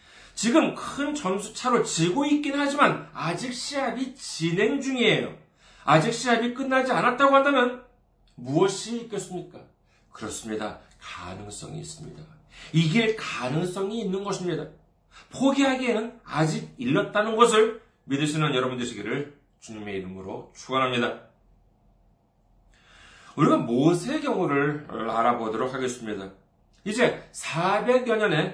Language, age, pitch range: Korean, 40-59, 135-225 Hz